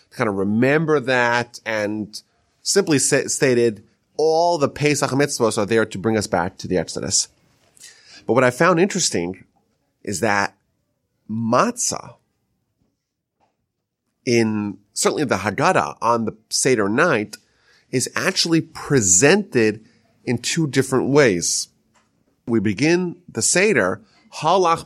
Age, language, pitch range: 30-49, English, 115-150 Hz